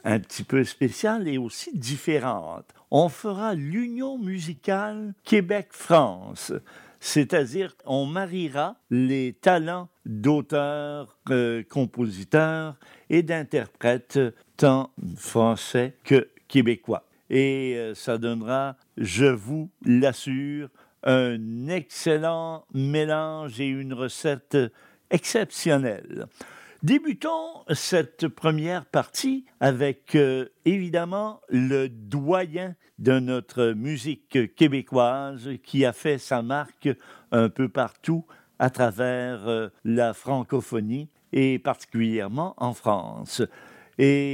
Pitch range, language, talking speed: 125-160 Hz, French, 95 wpm